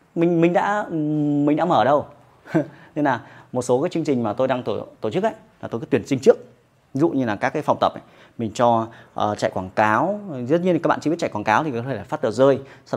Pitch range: 120-160 Hz